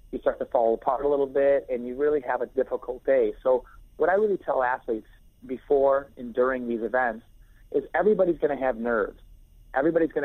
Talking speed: 200 wpm